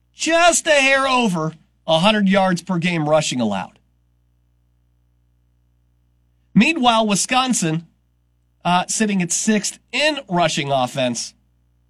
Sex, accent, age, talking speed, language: male, American, 40-59, 95 wpm, English